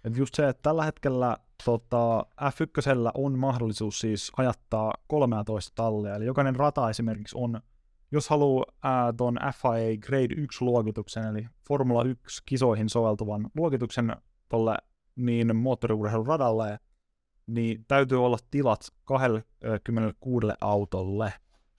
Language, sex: Finnish, male